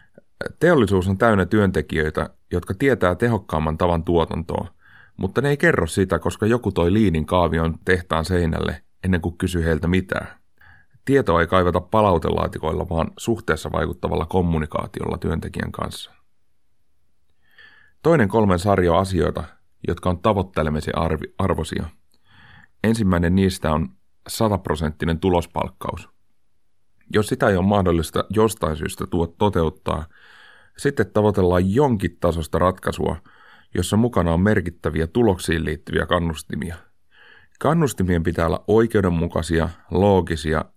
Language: Finnish